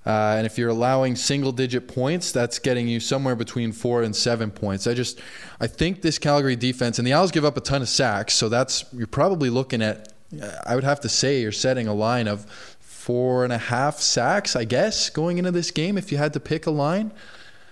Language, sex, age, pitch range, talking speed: English, male, 20-39, 110-130 Hz, 225 wpm